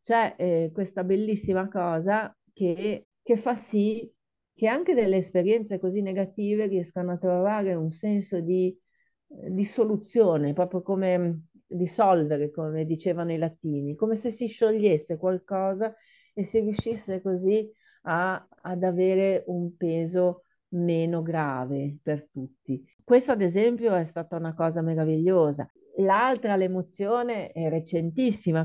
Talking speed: 120 wpm